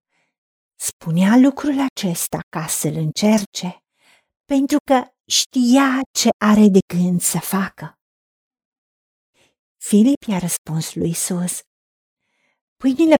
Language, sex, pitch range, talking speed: Romanian, female, 215-295 Hz, 95 wpm